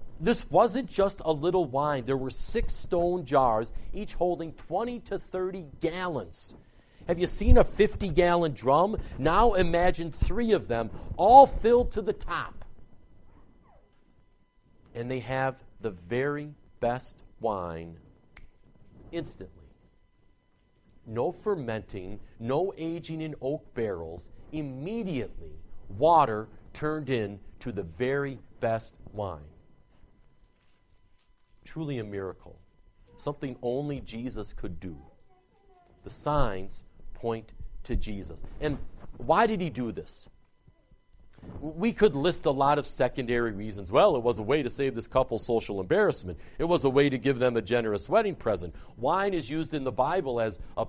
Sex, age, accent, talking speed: male, 50-69, American, 135 wpm